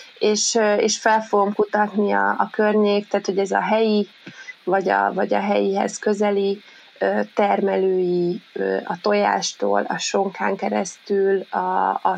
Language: Hungarian